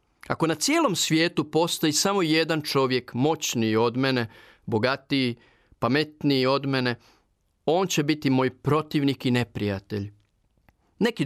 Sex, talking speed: male, 125 wpm